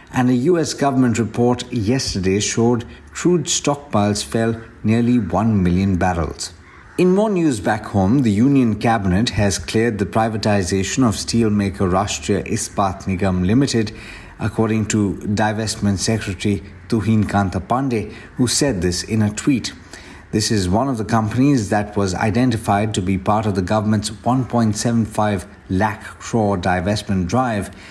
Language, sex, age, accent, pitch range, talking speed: English, male, 60-79, Indian, 100-120 Hz, 140 wpm